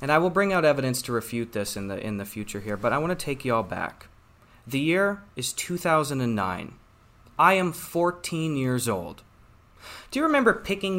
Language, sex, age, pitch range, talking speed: English, male, 30-49, 120-185 Hz, 195 wpm